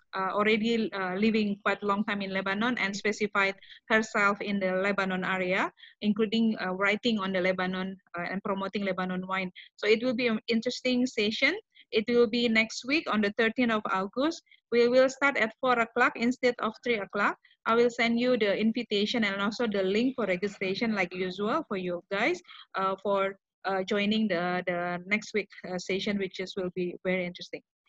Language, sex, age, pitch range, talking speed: Indonesian, female, 20-39, 200-260 Hz, 185 wpm